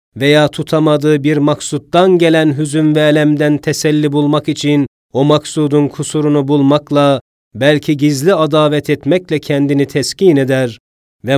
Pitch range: 145-160 Hz